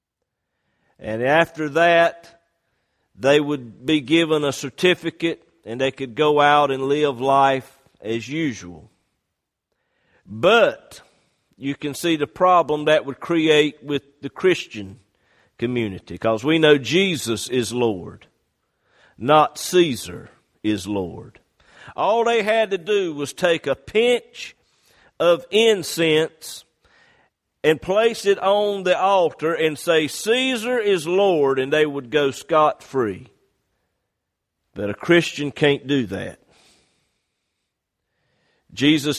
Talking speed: 120 wpm